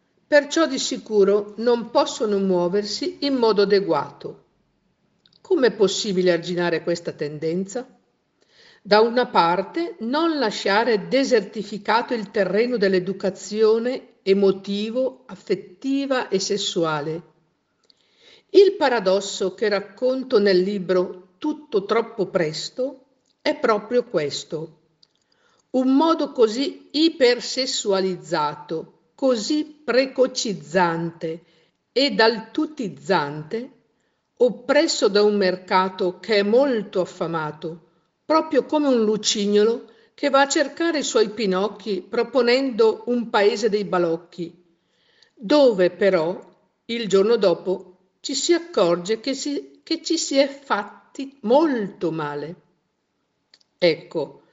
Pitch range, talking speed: 185-265 Hz, 100 wpm